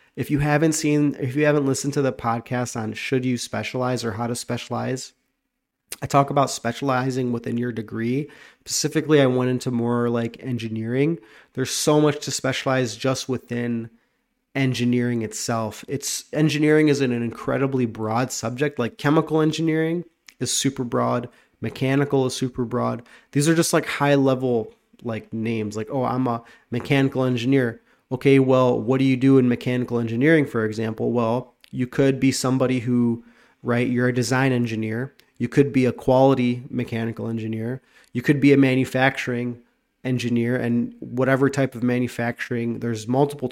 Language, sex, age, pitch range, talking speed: English, male, 30-49, 120-135 Hz, 160 wpm